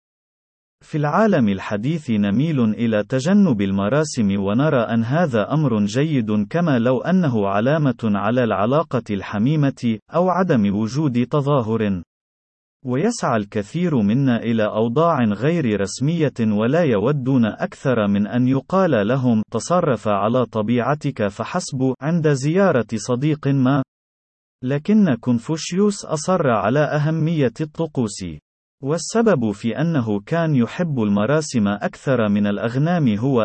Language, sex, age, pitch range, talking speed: Arabic, male, 30-49, 110-155 Hz, 110 wpm